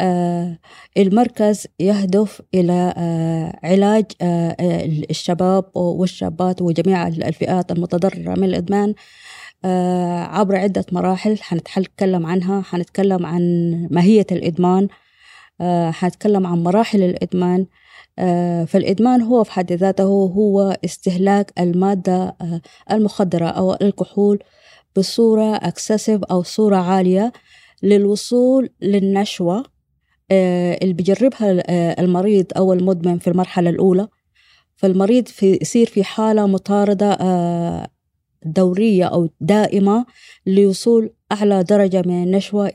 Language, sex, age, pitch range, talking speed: Arabic, female, 20-39, 180-205 Hz, 90 wpm